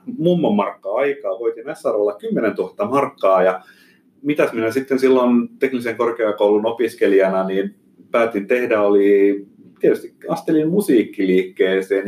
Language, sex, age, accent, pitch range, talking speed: Finnish, male, 30-49, native, 95-130 Hz, 110 wpm